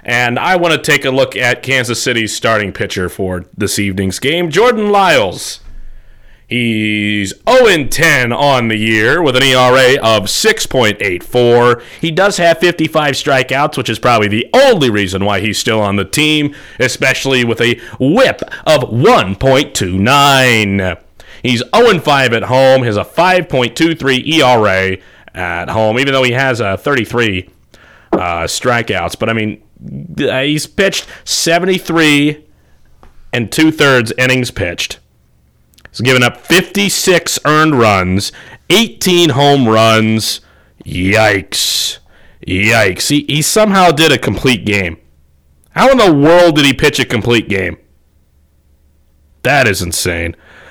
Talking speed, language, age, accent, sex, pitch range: 130 wpm, English, 30-49, American, male, 100-145 Hz